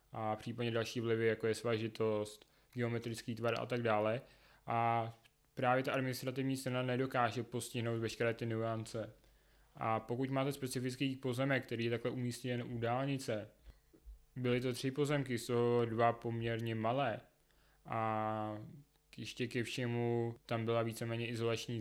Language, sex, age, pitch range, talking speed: Czech, male, 20-39, 110-125 Hz, 135 wpm